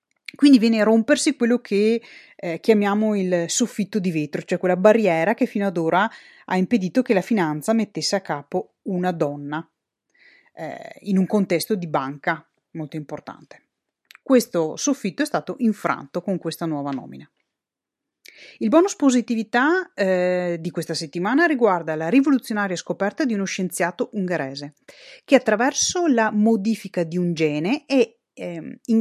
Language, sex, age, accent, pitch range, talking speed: Italian, female, 30-49, native, 170-240 Hz, 145 wpm